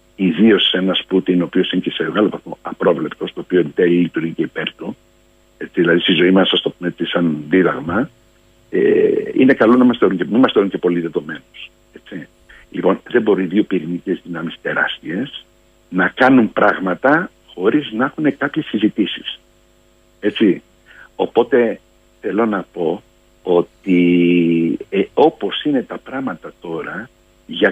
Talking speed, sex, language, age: 140 wpm, male, Greek, 60-79